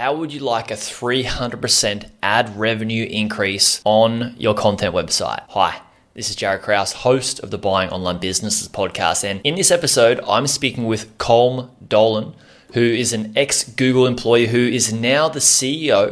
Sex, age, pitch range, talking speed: male, 20-39, 100-125 Hz, 165 wpm